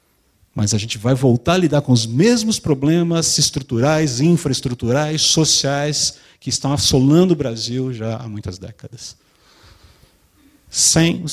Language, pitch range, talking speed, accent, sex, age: Portuguese, 105-135 Hz, 135 wpm, Brazilian, male, 50-69